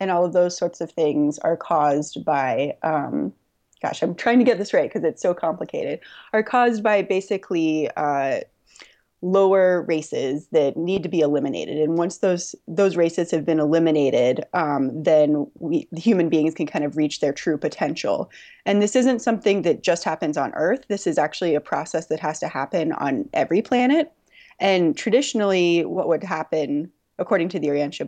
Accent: American